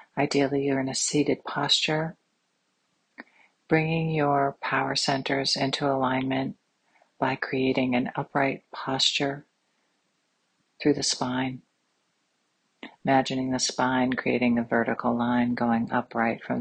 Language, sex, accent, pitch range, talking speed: English, female, American, 125-145 Hz, 110 wpm